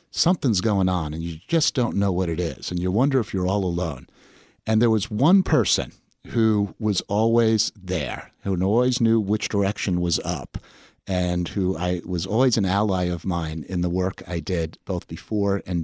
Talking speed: 195 wpm